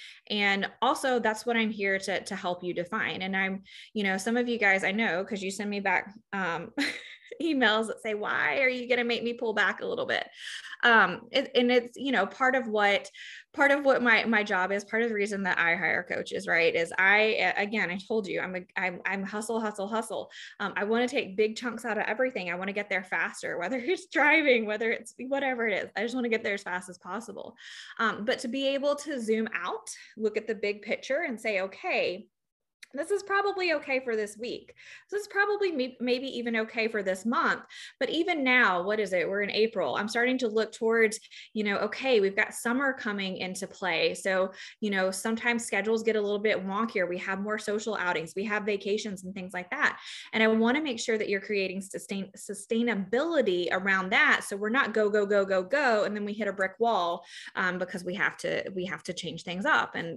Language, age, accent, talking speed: English, 20-39, American, 230 wpm